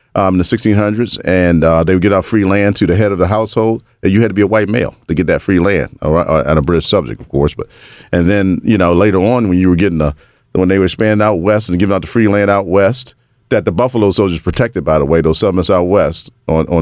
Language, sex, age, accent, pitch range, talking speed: English, male, 40-59, American, 90-115 Hz, 275 wpm